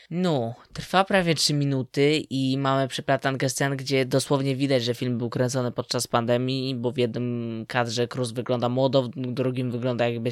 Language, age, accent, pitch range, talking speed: Polish, 20-39, native, 125-140 Hz, 170 wpm